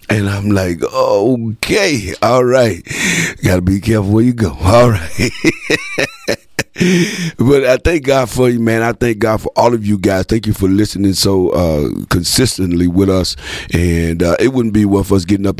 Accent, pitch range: American, 85-105 Hz